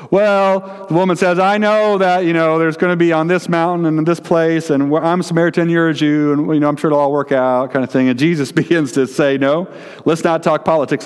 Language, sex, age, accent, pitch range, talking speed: English, male, 40-59, American, 115-170 Hz, 265 wpm